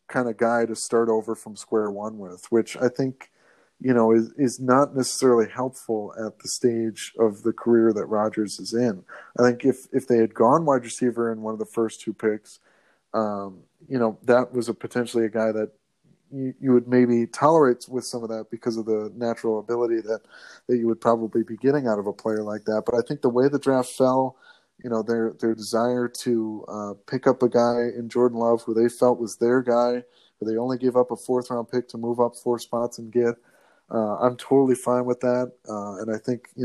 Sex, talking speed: male, 225 wpm